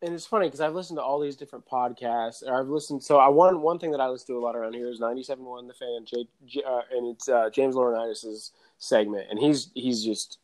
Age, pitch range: 20-39, 115-145 Hz